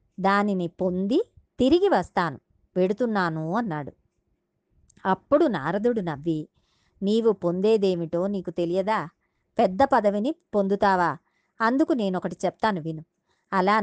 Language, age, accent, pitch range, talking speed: Telugu, 20-39, native, 180-240 Hz, 90 wpm